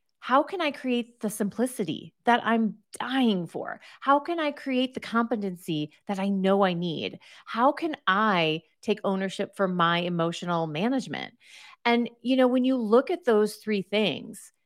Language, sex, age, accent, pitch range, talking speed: English, female, 30-49, American, 190-275 Hz, 165 wpm